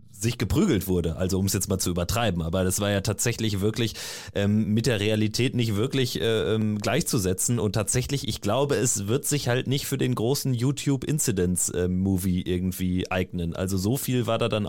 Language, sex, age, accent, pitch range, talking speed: German, male, 30-49, German, 105-140 Hz, 190 wpm